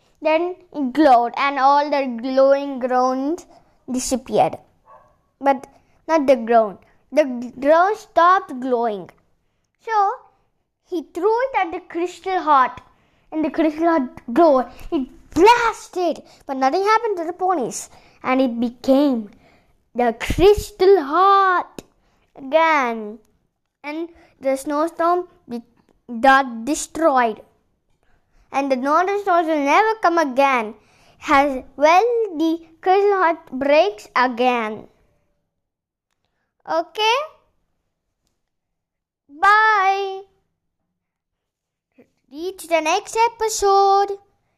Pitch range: 270-370 Hz